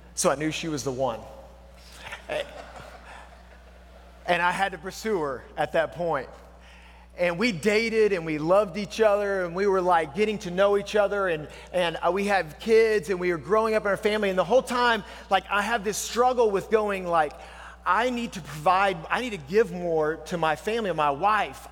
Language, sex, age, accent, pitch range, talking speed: English, male, 30-49, American, 140-215 Hz, 200 wpm